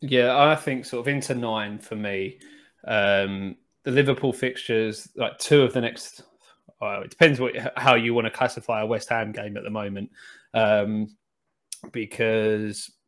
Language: English